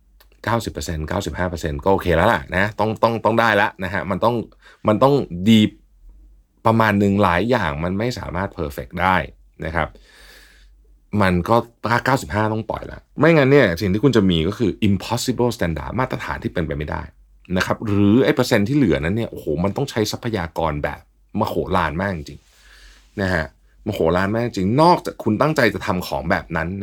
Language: Thai